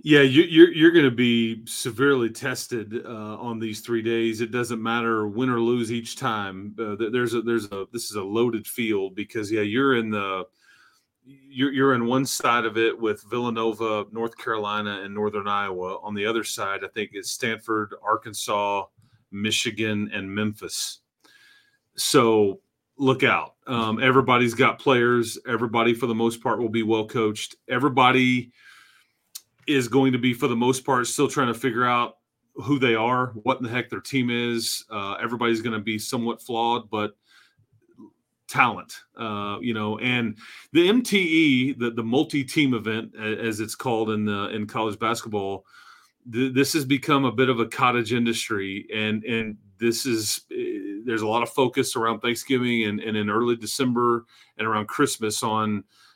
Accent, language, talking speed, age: American, English, 170 wpm, 30-49